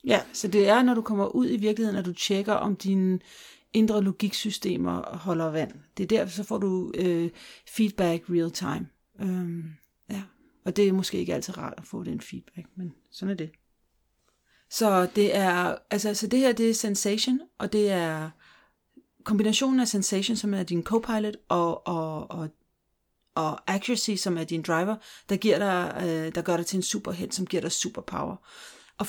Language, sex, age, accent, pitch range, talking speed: Danish, female, 40-59, native, 190-230 Hz, 185 wpm